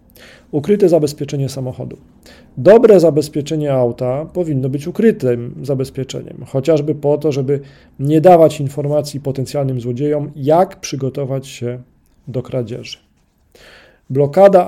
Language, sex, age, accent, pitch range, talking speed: Polish, male, 40-59, native, 130-155 Hz, 100 wpm